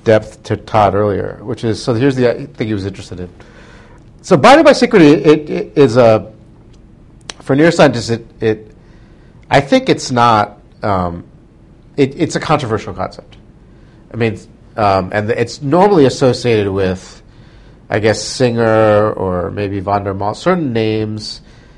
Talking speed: 145 wpm